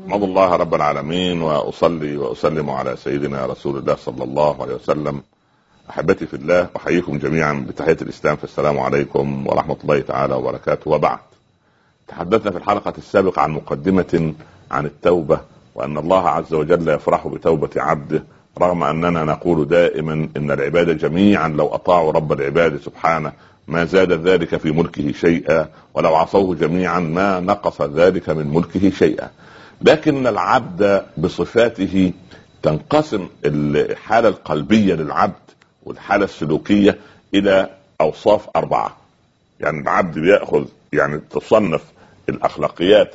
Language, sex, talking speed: Arabic, male, 125 wpm